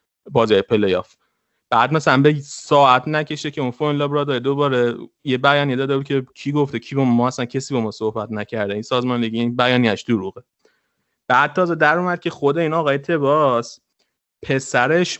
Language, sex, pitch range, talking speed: Persian, male, 120-145 Hz, 175 wpm